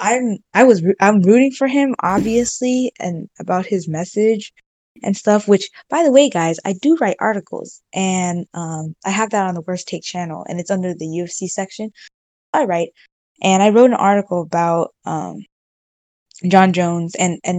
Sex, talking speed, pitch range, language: female, 180 wpm, 170-200 Hz, English